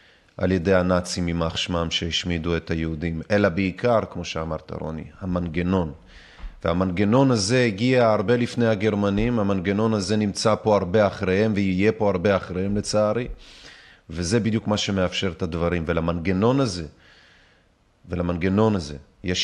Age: 30-49